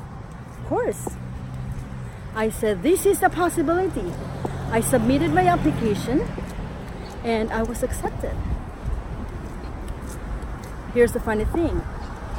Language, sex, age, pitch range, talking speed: English, female, 40-59, 200-270 Hz, 90 wpm